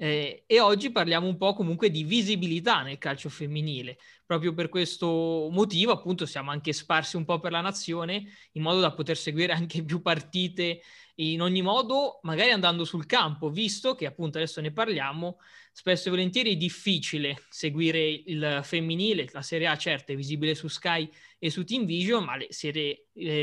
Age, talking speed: 20-39, 175 wpm